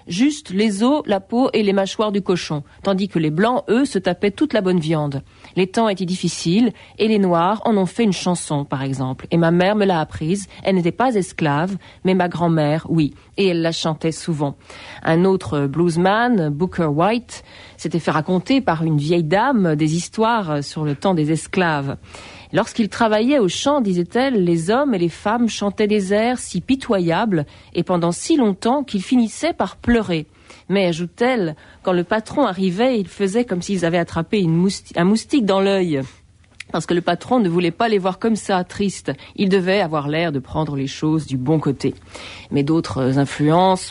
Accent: French